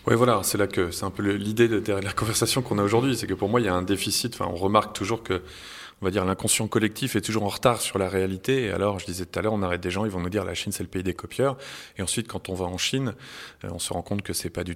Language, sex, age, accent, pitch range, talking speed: French, male, 20-39, French, 95-110 Hz, 315 wpm